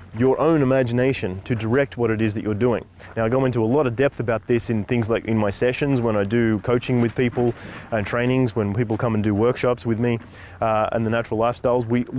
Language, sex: English, male